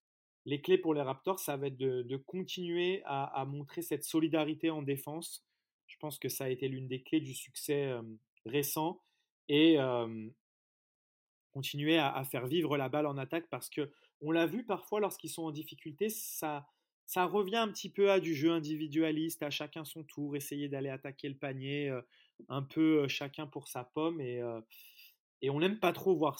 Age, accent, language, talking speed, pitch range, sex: 30-49, French, French, 195 wpm, 135-160 Hz, male